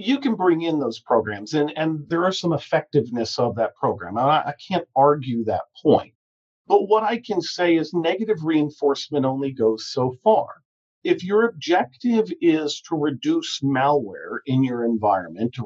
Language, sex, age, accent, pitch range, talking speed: English, male, 50-69, American, 140-195 Hz, 170 wpm